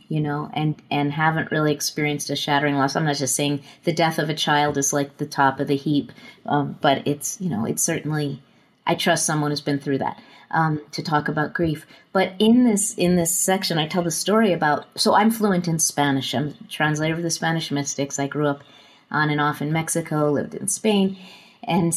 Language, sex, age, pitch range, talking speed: English, female, 30-49, 150-195 Hz, 220 wpm